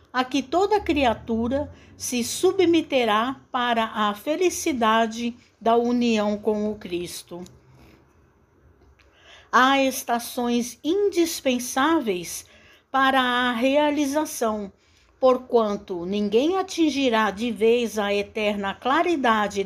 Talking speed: 85 wpm